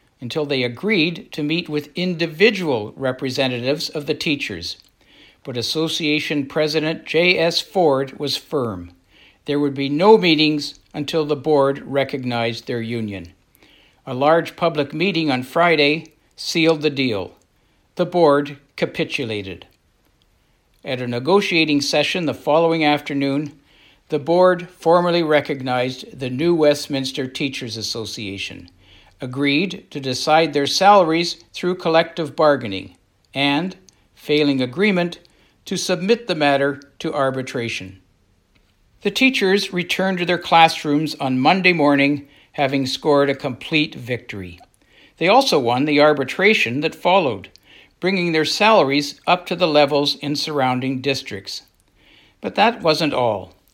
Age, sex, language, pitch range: 60-79, male, English, 130-165 Hz